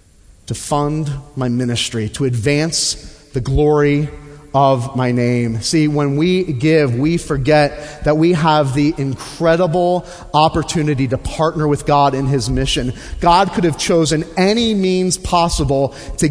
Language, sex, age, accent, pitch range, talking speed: English, male, 30-49, American, 140-180 Hz, 140 wpm